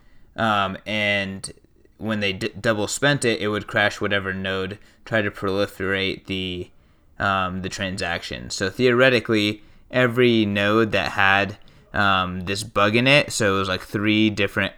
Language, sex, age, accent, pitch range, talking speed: English, male, 20-39, American, 95-110 Hz, 140 wpm